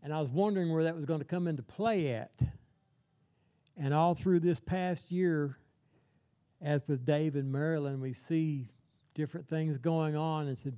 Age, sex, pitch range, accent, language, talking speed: 60-79, male, 135-160 Hz, American, English, 180 wpm